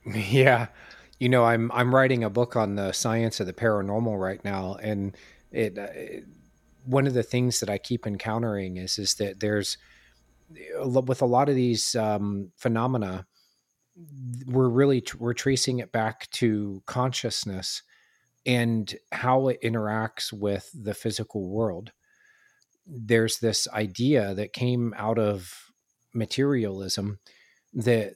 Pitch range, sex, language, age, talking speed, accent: 105-125 Hz, male, English, 40-59, 135 wpm, American